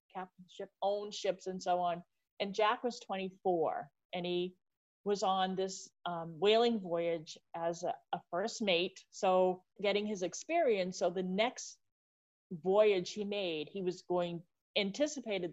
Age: 40-59